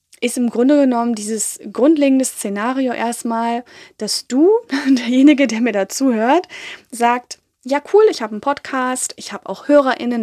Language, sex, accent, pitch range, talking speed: German, female, German, 215-270 Hz, 145 wpm